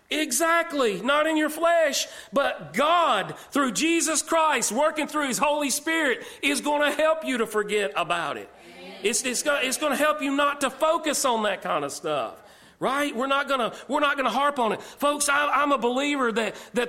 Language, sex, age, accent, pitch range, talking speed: English, male, 40-59, American, 215-295 Hz, 190 wpm